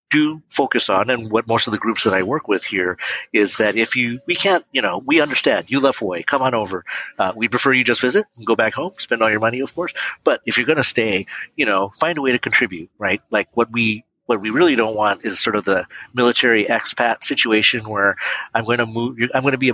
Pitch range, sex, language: 105-125 Hz, male, English